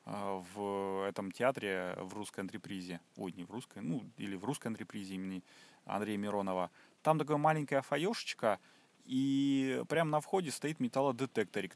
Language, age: Russian, 30-49